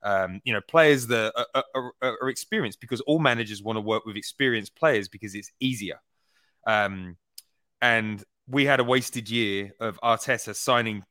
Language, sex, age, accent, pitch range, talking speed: English, male, 20-39, British, 100-125 Hz, 175 wpm